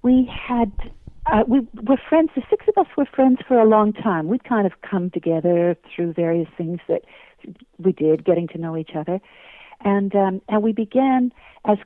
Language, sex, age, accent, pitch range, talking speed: English, female, 60-79, American, 180-220 Hz, 190 wpm